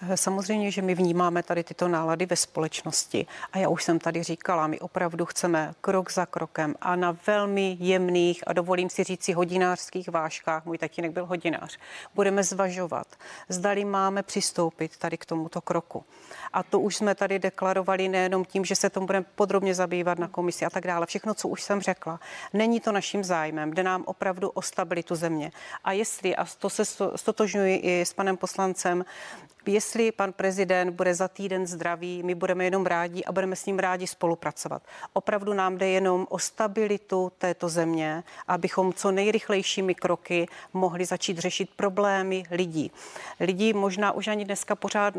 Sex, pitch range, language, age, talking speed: female, 175-195 Hz, Czech, 40-59, 175 wpm